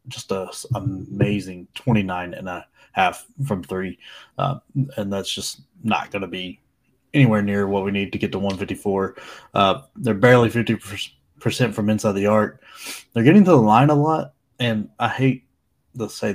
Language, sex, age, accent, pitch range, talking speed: English, male, 20-39, American, 100-115 Hz, 175 wpm